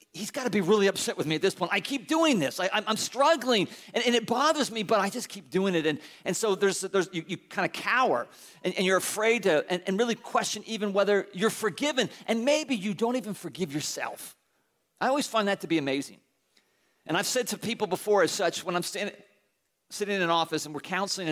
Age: 40-59